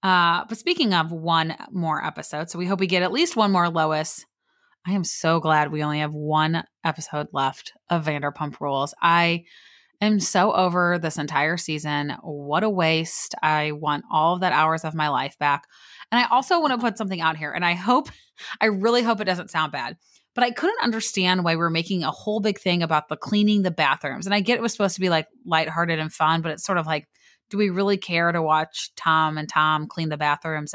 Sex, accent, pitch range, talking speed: female, American, 160-210 Hz, 220 wpm